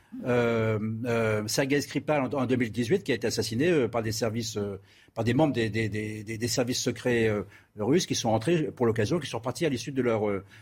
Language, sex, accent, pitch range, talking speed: French, male, French, 115-140 Hz, 225 wpm